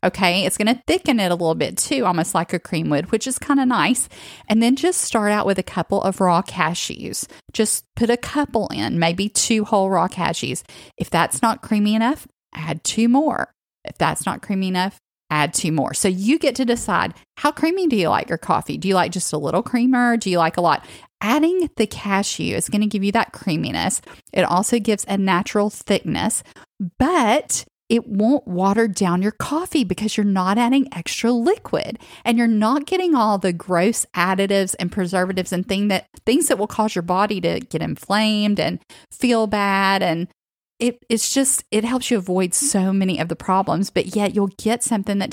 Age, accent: 30-49, American